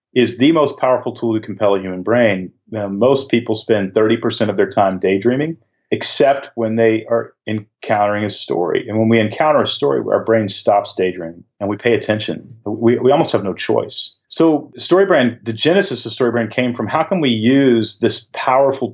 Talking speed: 195 wpm